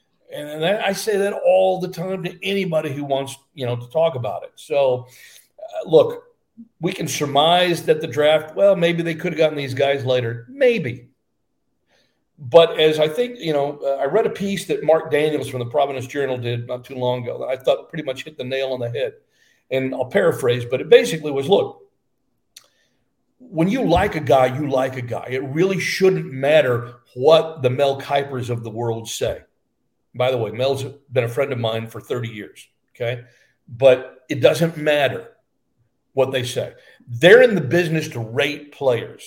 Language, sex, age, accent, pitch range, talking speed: English, male, 50-69, American, 125-175 Hz, 195 wpm